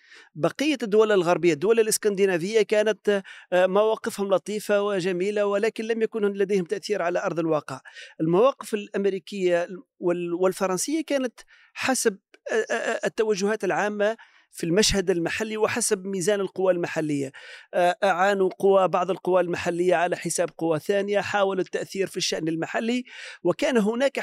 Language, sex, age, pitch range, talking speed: Arabic, male, 40-59, 170-210 Hz, 115 wpm